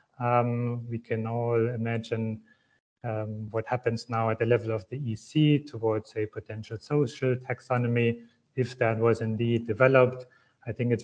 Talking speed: 150 wpm